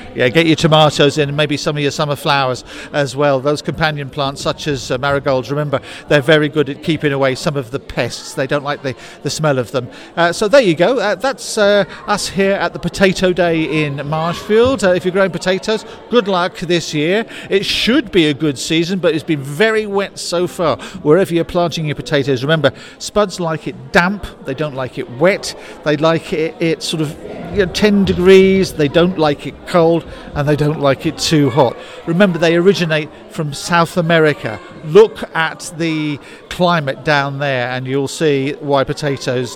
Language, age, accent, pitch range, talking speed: English, 50-69, British, 145-180 Hz, 195 wpm